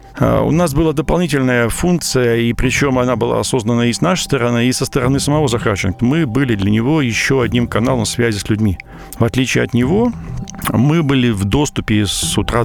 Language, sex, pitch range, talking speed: Russian, male, 105-135 Hz, 185 wpm